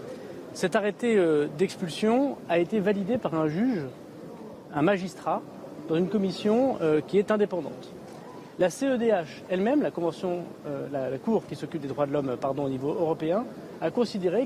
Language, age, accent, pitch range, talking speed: French, 40-59, French, 145-190 Hz, 155 wpm